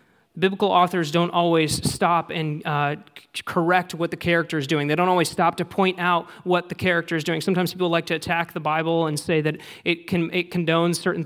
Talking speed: 220 wpm